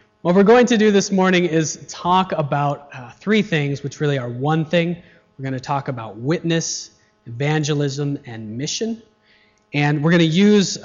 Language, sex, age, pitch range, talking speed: English, male, 30-49, 115-160 Hz, 175 wpm